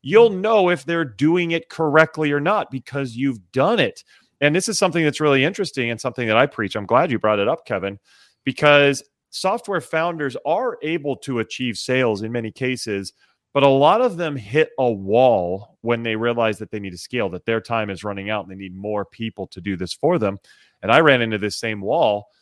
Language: English